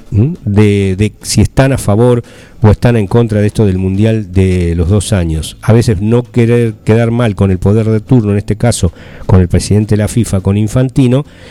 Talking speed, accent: 210 wpm, Argentinian